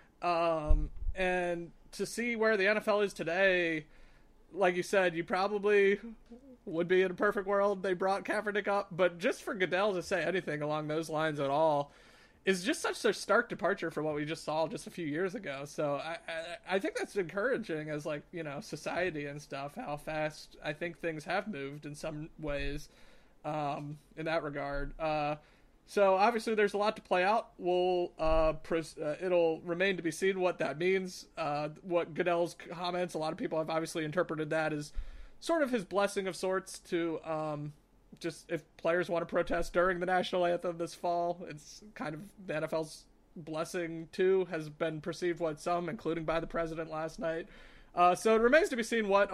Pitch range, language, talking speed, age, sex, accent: 160-195 Hz, English, 195 wpm, 30-49, male, American